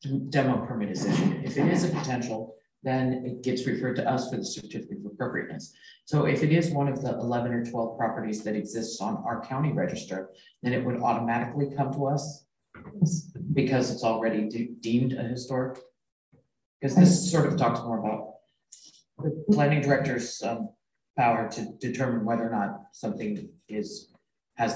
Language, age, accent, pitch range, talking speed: English, 40-59, American, 110-145 Hz, 165 wpm